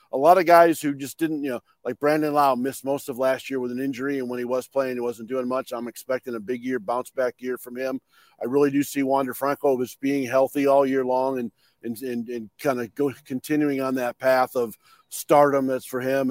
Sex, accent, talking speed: male, American, 245 wpm